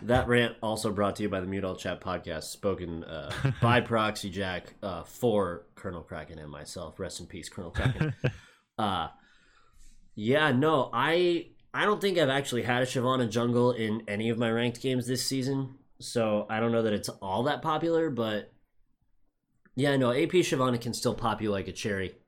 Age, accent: 20-39, American